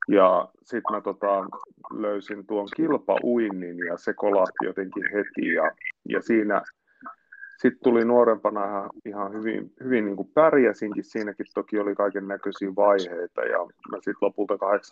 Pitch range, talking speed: 100-115 Hz, 130 wpm